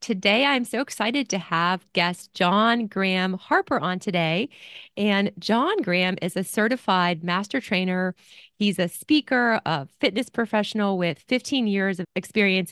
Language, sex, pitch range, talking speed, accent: English, female, 185-230 Hz, 145 wpm, American